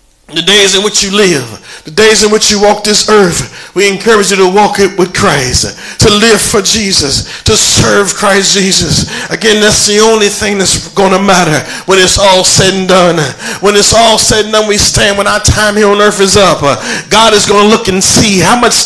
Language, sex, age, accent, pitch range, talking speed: English, male, 40-59, American, 150-210 Hz, 225 wpm